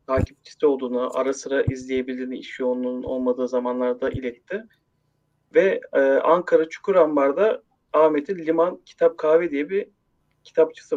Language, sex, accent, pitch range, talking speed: Turkish, male, native, 145-220 Hz, 115 wpm